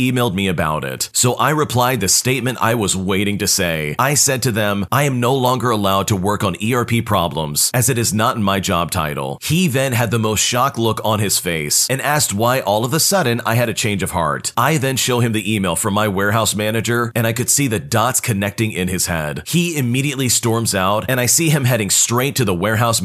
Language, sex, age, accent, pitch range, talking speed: English, male, 40-59, American, 100-130 Hz, 240 wpm